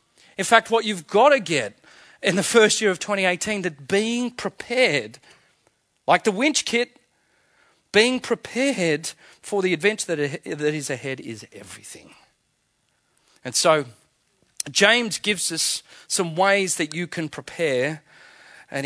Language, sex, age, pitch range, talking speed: English, male, 40-59, 145-205 Hz, 135 wpm